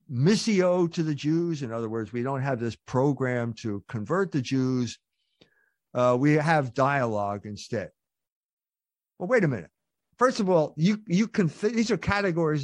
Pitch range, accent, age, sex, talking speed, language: 140-225 Hz, American, 50-69, male, 160 wpm, English